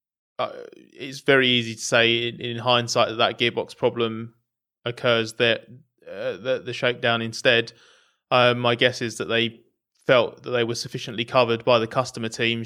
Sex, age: male, 20-39